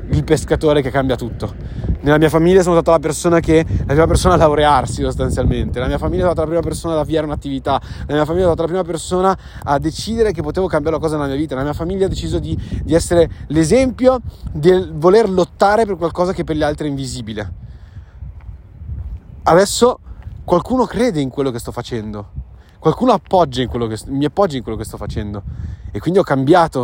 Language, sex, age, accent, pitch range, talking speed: Italian, male, 30-49, native, 105-155 Hz, 205 wpm